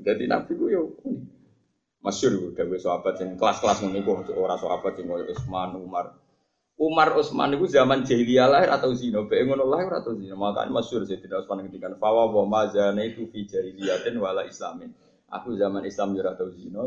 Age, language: 20-39, Indonesian